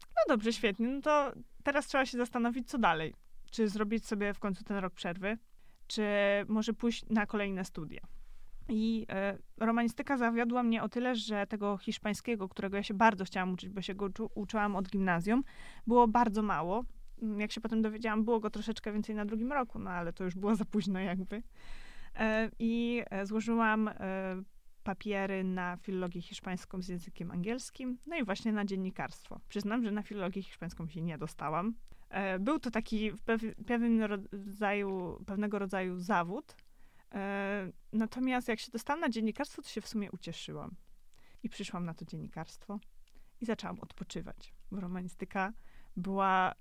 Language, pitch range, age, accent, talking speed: Polish, 195-230 Hz, 20-39, native, 150 wpm